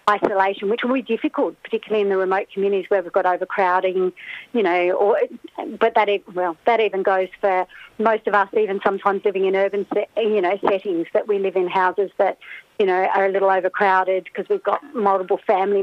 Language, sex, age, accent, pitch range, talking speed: English, female, 40-59, Australian, 190-215 Hz, 210 wpm